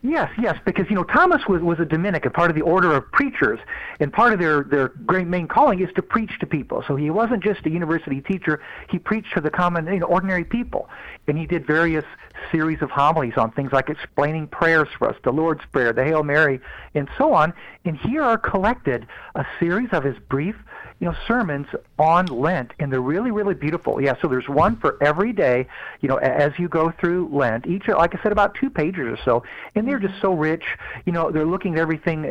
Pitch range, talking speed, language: 145-185 Hz, 225 wpm, English